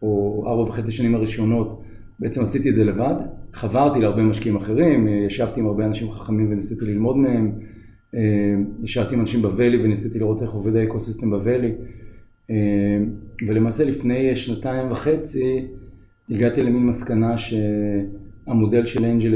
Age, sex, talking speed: 40-59, male, 130 wpm